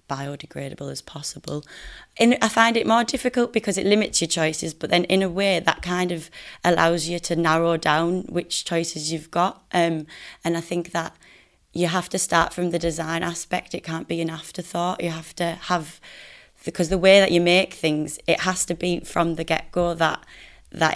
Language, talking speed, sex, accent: English, 200 wpm, female, British